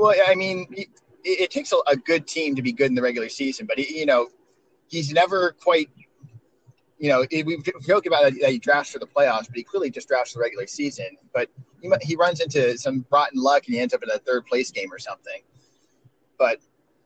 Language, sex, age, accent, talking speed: English, male, 30-49, American, 210 wpm